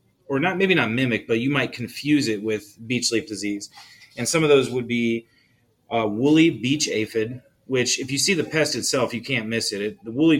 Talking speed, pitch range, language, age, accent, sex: 220 wpm, 110-130 Hz, English, 30-49, American, male